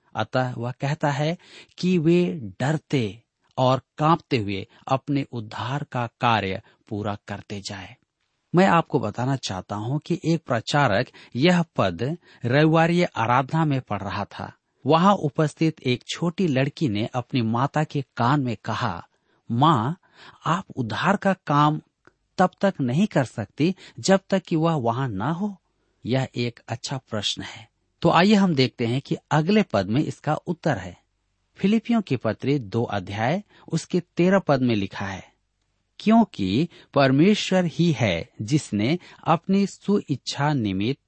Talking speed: 145 wpm